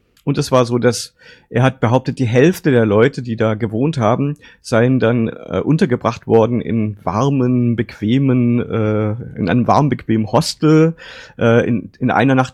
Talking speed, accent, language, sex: 165 wpm, German, German, male